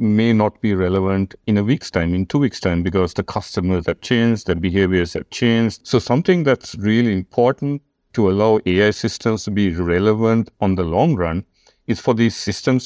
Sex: male